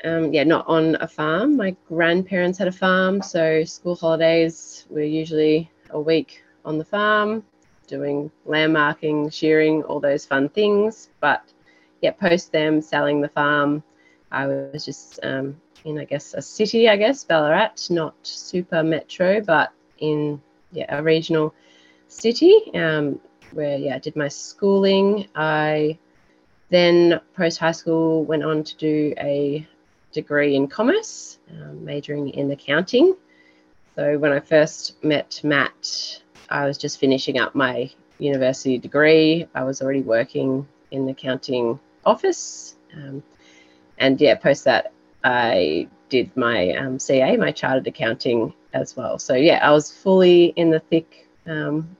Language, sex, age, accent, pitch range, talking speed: English, female, 20-39, Australian, 135-165 Hz, 145 wpm